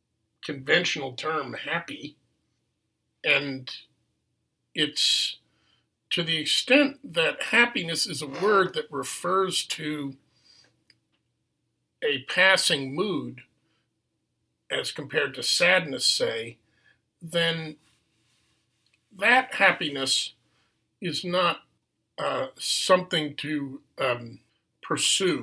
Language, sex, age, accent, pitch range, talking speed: English, male, 50-69, American, 125-185 Hz, 80 wpm